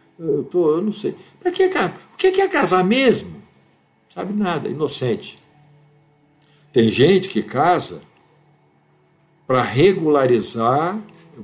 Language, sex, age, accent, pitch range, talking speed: Portuguese, male, 60-79, Brazilian, 110-180 Hz, 115 wpm